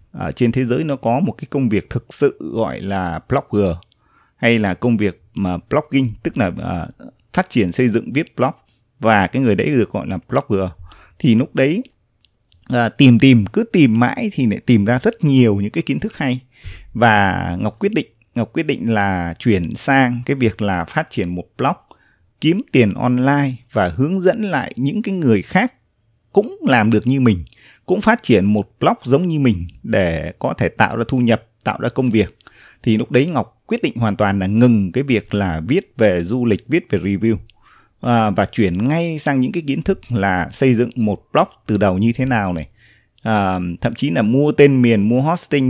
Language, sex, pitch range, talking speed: Vietnamese, male, 100-135 Hz, 205 wpm